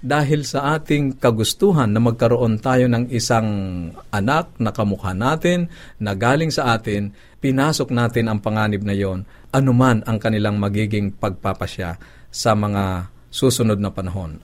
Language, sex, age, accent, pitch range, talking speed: Filipino, male, 50-69, native, 100-125 Hz, 135 wpm